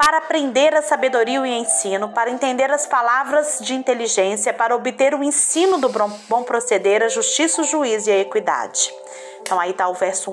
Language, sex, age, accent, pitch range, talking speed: Portuguese, female, 30-49, Brazilian, 205-330 Hz, 185 wpm